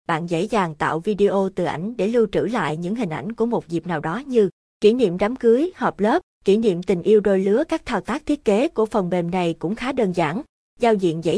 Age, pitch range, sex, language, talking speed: 20-39, 175-225 Hz, female, Vietnamese, 255 wpm